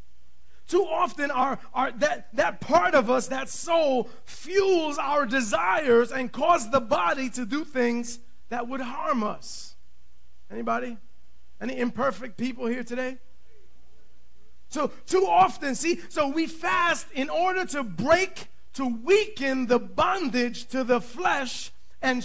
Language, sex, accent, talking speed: English, male, American, 135 wpm